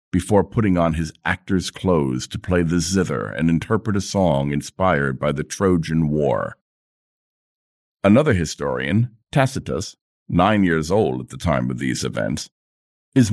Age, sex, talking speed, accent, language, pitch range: 50-69, male, 145 wpm, American, English, 75-110 Hz